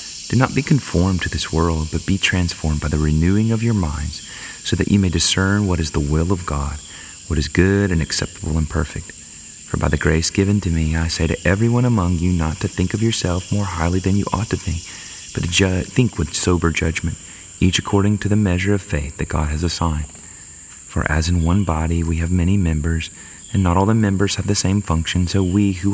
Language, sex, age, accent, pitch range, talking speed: English, male, 30-49, American, 80-95 Hz, 225 wpm